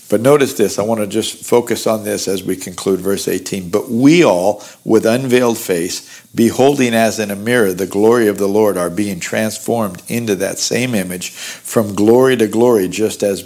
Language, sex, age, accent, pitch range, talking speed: English, male, 50-69, American, 100-125 Hz, 195 wpm